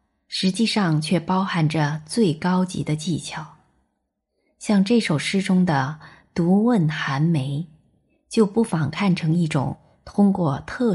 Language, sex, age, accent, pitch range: Chinese, female, 20-39, native, 155-200 Hz